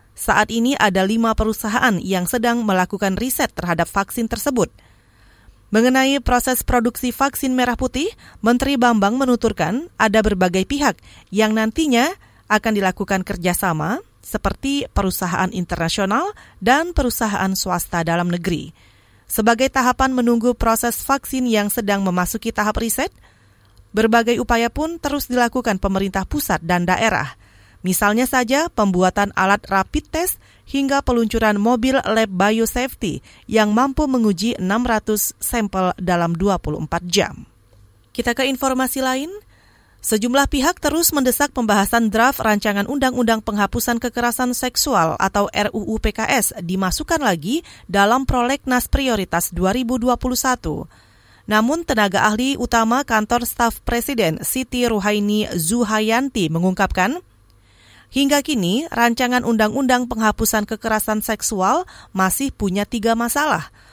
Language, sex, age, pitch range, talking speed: Indonesian, female, 30-49, 195-255 Hz, 115 wpm